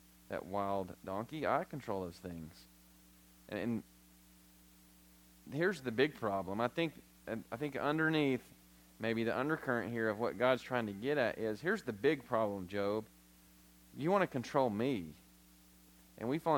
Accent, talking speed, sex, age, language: American, 155 wpm, male, 30-49, English